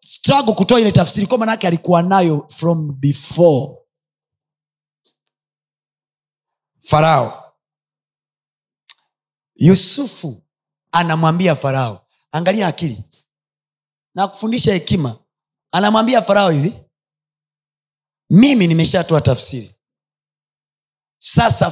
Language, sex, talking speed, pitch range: Swahili, male, 75 wpm, 135-170 Hz